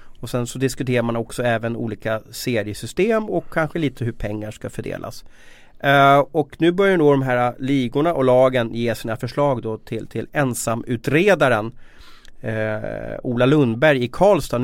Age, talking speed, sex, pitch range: 30-49, 155 wpm, male, 115-140 Hz